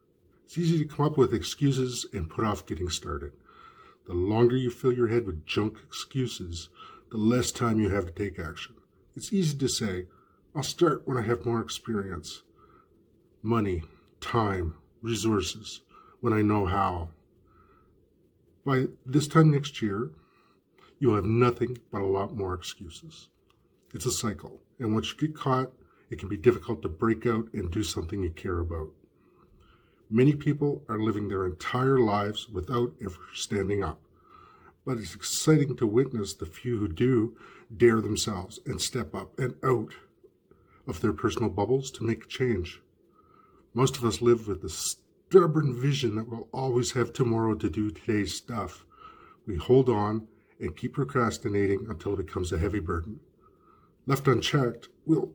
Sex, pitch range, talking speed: male, 100-125 Hz, 160 wpm